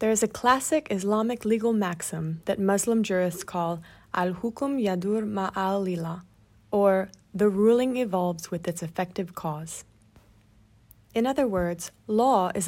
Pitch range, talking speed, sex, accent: 175-215 Hz, 130 wpm, female, American